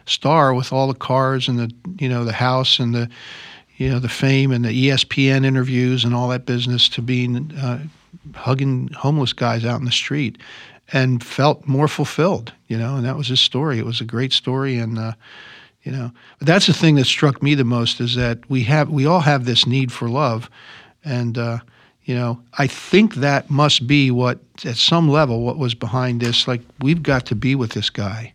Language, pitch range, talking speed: English, 120-140 Hz, 210 wpm